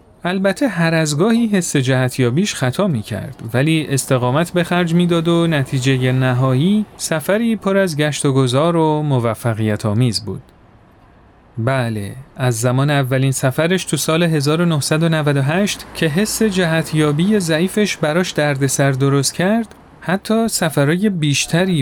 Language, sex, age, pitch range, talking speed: Persian, male, 40-59, 125-170 Hz, 130 wpm